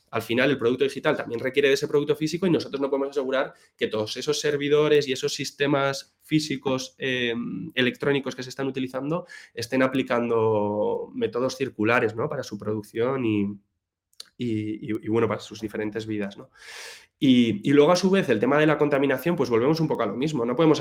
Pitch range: 115-145 Hz